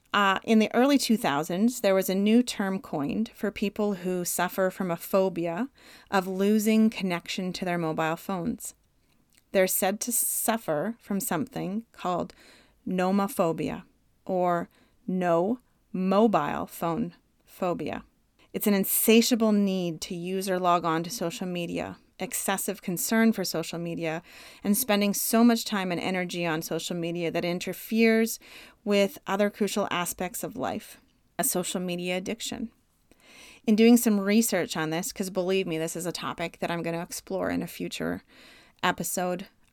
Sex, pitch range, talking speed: female, 175-220 Hz, 150 wpm